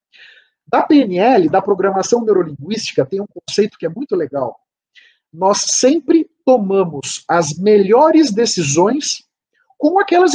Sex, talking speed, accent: male, 115 wpm, Brazilian